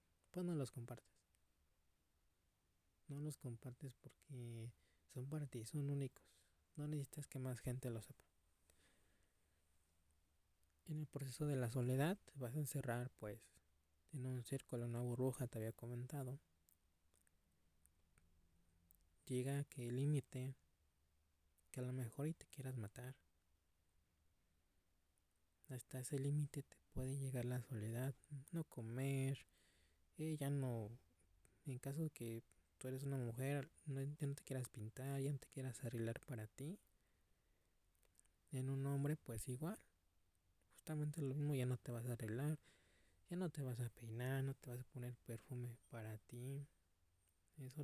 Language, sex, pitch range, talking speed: Spanish, male, 85-135 Hz, 140 wpm